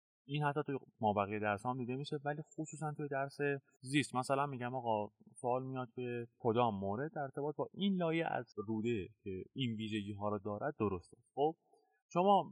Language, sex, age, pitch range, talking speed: Persian, male, 30-49, 105-150 Hz, 180 wpm